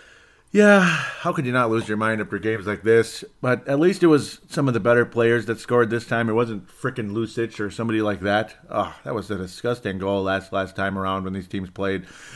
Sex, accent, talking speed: male, American, 235 wpm